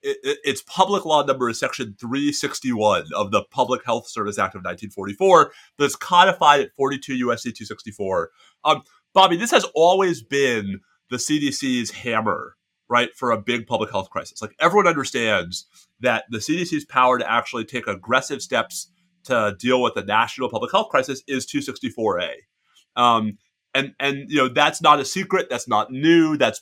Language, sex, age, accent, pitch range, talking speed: English, male, 30-49, American, 125-165 Hz, 160 wpm